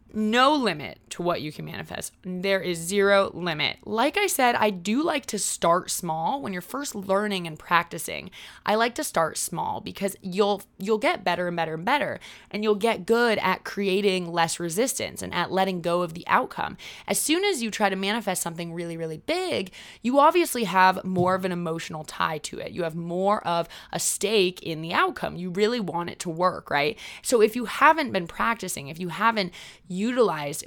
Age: 20-39